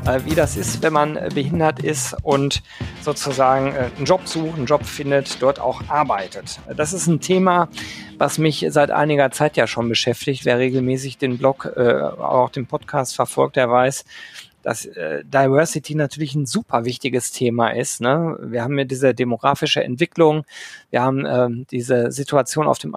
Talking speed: 155 wpm